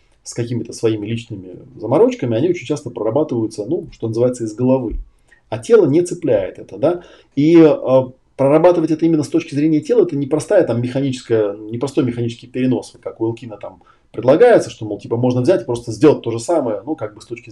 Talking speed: 180 wpm